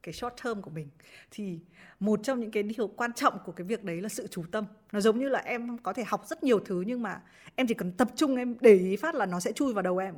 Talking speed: 295 wpm